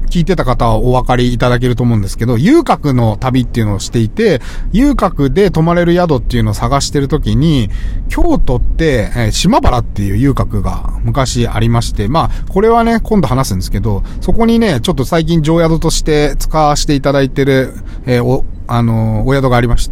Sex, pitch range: male, 115-175 Hz